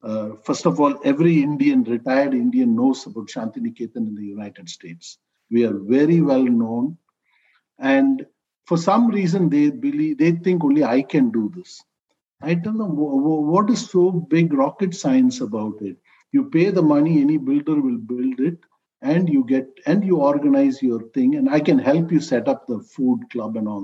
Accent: Indian